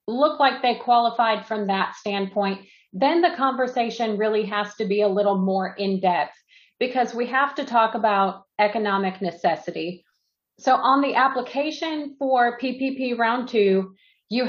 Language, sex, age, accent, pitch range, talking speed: English, female, 40-59, American, 195-230 Hz, 145 wpm